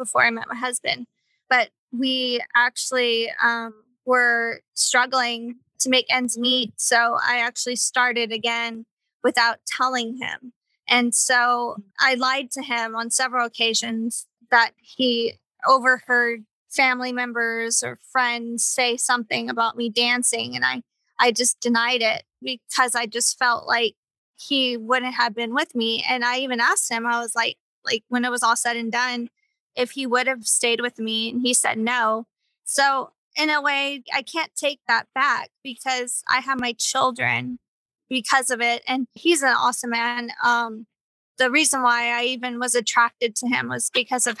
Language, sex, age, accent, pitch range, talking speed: English, female, 20-39, American, 235-255 Hz, 165 wpm